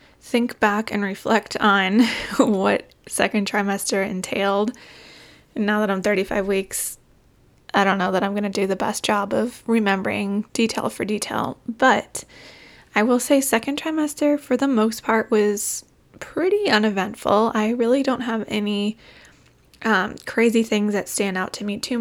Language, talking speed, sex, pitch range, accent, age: English, 155 wpm, female, 205-240 Hz, American, 20-39